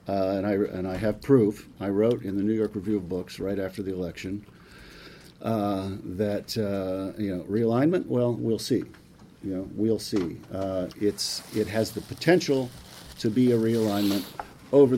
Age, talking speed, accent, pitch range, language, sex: 50-69, 175 wpm, American, 95-110 Hz, English, male